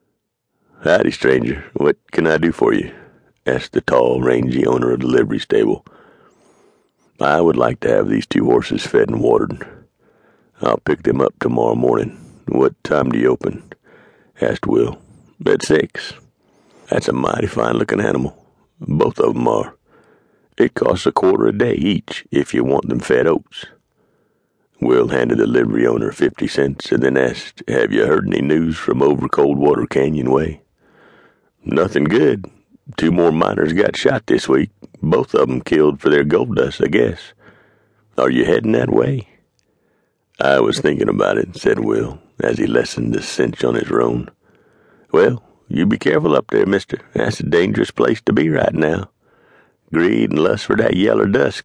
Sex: male